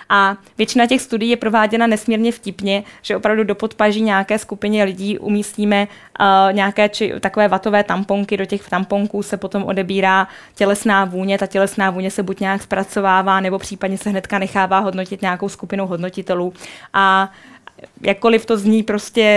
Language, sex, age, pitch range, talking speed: Czech, female, 20-39, 190-220 Hz, 160 wpm